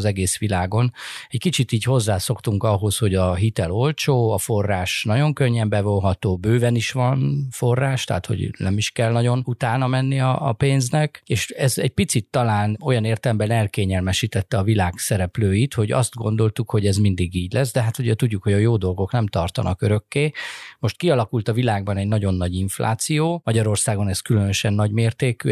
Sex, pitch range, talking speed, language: male, 100-125 Hz, 175 wpm, Hungarian